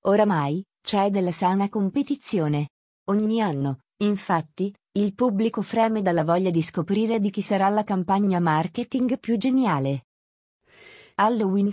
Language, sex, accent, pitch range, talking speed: Italian, female, native, 175-220 Hz, 125 wpm